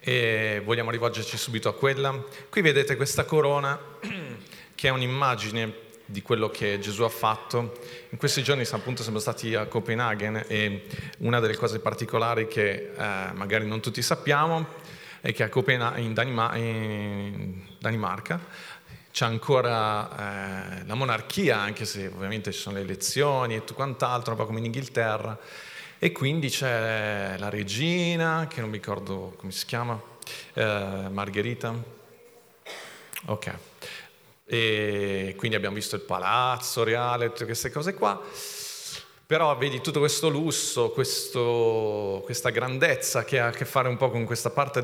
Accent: native